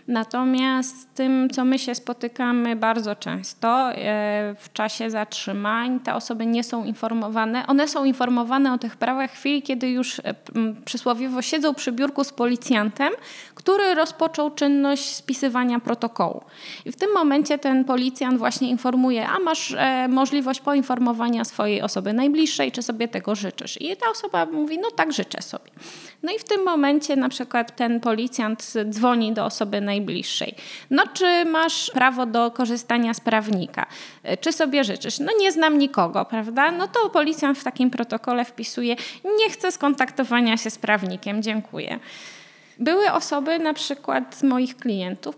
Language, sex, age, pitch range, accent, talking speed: Polish, female, 20-39, 225-285 Hz, native, 150 wpm